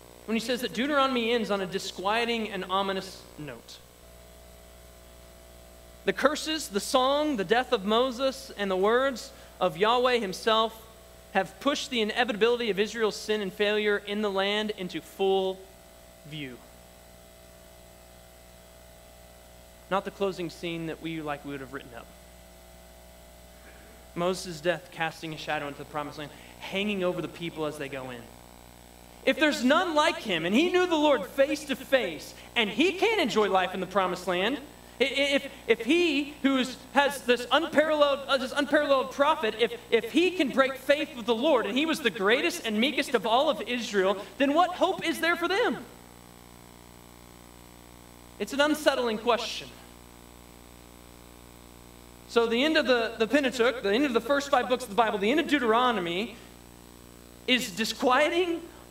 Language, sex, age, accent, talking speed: English, male, 20-39, American, 160 wpm